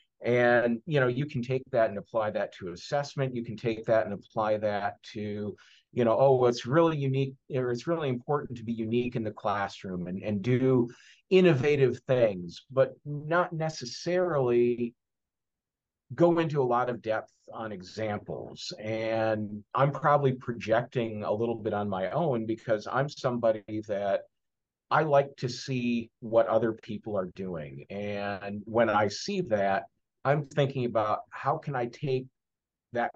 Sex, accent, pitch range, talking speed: male, American, 110-135 Hz, 160 wpm